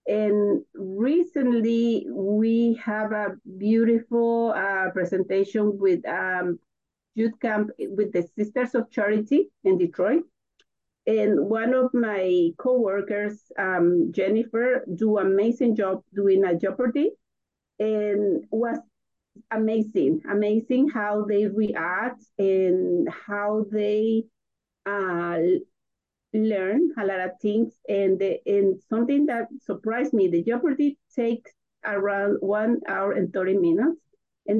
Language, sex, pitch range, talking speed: English, female, 195-240 Hz, 115 wpm